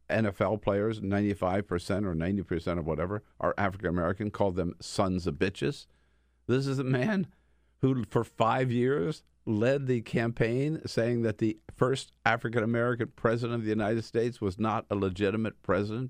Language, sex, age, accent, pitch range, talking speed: English, male, 50-69, American, 95-130 Hz, 150 wpm